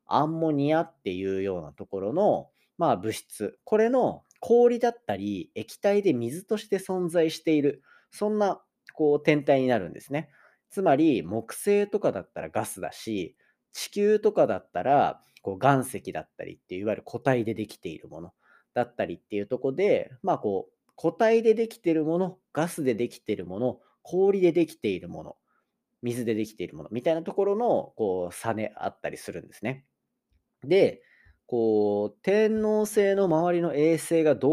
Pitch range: 120-205 Hz